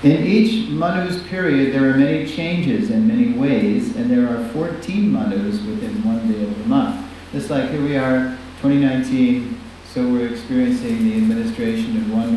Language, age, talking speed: English, 50-69, 175 wpm